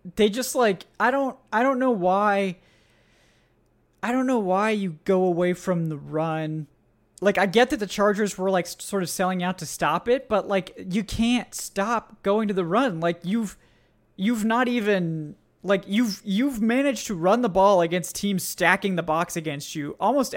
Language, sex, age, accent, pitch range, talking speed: English, male, 20-39, American, 175-220 Hz, 190 wpm